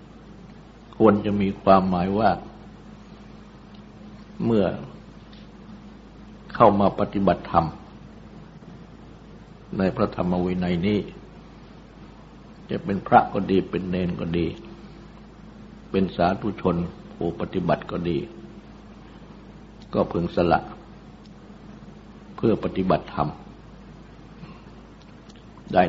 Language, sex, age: Thai, male, 60-79